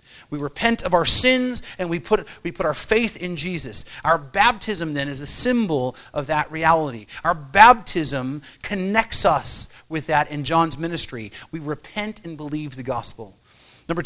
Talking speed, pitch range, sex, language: 160 wpm, 155-205 Hz, male, English